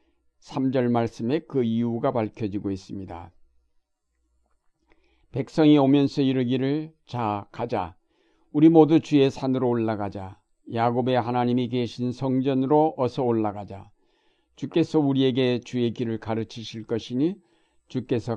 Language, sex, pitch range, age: Korean, male, 115-140 Hz, 60-79